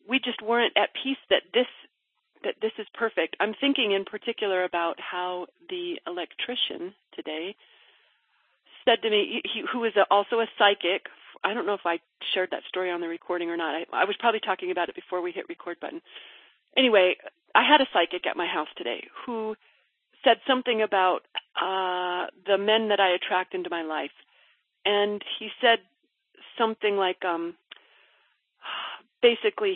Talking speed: 165 wpm